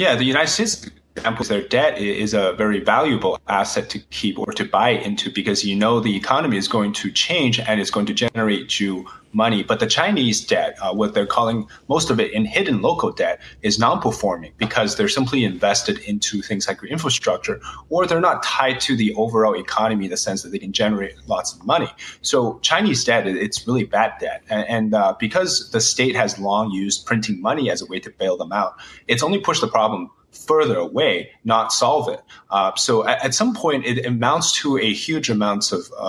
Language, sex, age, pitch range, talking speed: English, male, 30-49, 105-140 Hz, 210 wpm